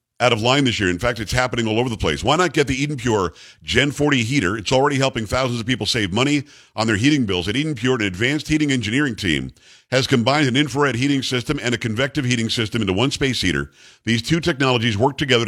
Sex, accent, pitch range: male, American, 110-140 Hz